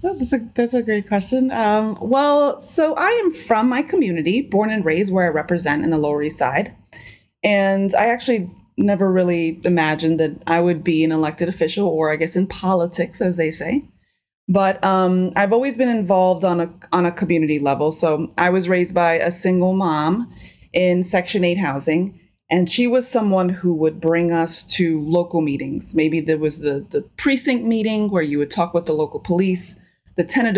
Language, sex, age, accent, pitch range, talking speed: English, female, 30-49, American, 160-205 Hz, 195 wpm